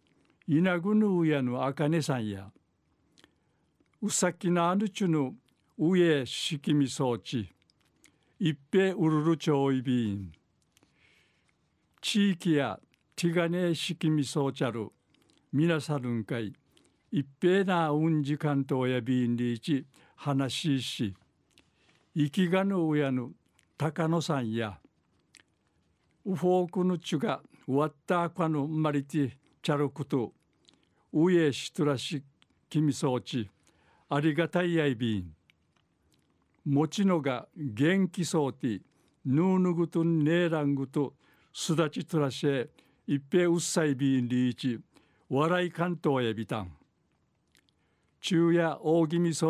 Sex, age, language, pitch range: male, 60-79, Japanese, 135-170 Hz